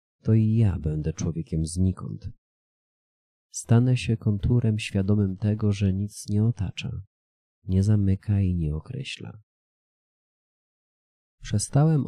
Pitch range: 90-110 Hz